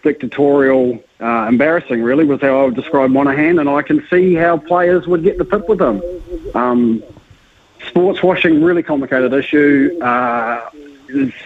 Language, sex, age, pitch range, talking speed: English, male, 40-59, 125-140 Hz, 155 wpm